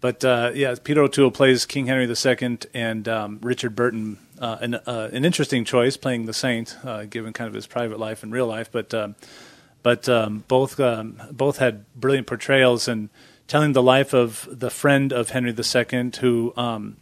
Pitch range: 115-130 Hz